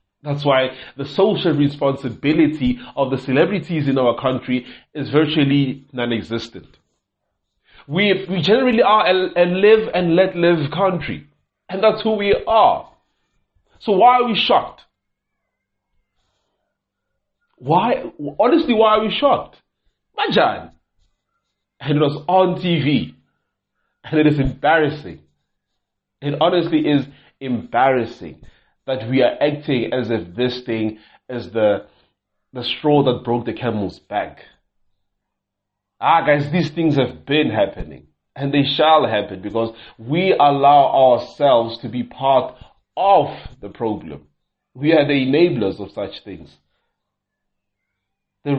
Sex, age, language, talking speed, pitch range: male, 30-49, English, 125 wpm, 115-155 Hz